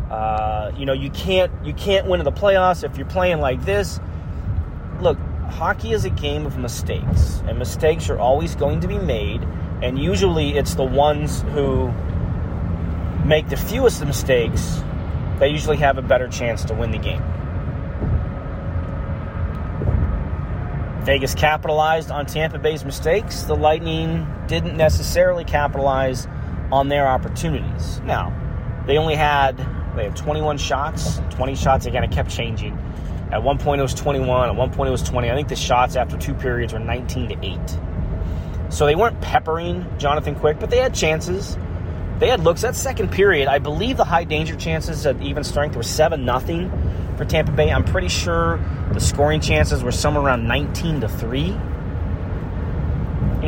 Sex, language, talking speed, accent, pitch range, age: male, English, 165 wpm, American, 85-135 Hz, 30-49